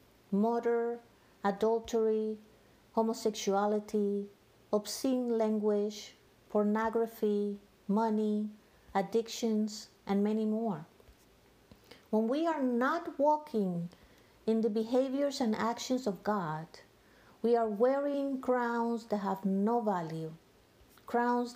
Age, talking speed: 50-69, 90 wpm